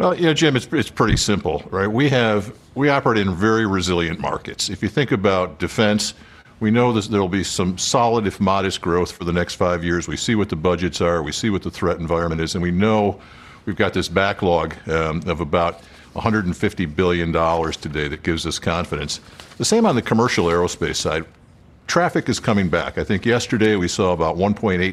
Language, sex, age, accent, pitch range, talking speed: English, male, 50-69, American, 90-110 Hz, 205 wpm